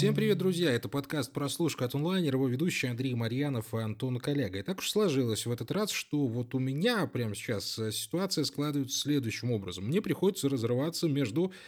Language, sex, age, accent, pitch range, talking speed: Russian, male, 20-39, native, 115-155 Hz, 180 wpm